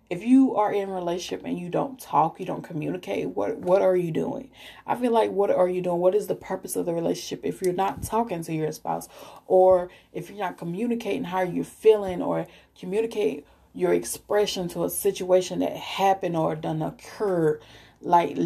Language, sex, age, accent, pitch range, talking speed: English, female, 30-49, American, 170-195 Hz, 195 wpm